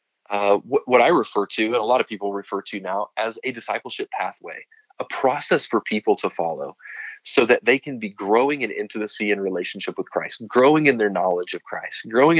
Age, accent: 30-49, American